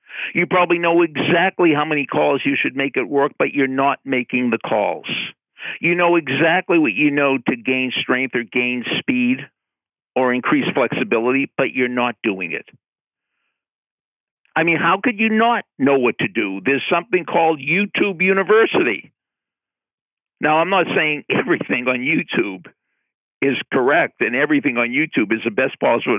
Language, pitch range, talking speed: English, 140-220 Hz, 160 wpm